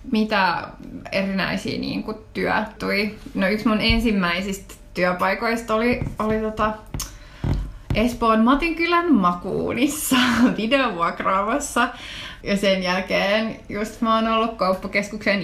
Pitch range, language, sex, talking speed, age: 185-230 Hz, Finnish, female, 100 wpm, 20-39